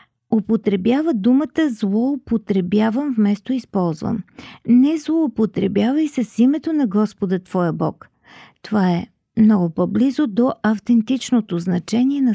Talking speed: 100 wpm